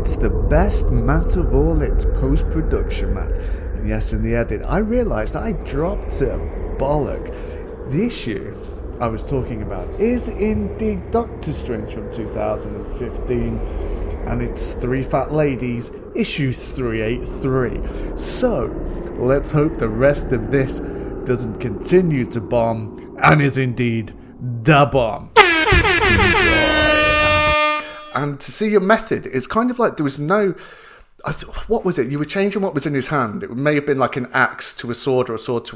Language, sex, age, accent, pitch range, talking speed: English, male, 30-49, British, 115-155 Hz, 160 wpm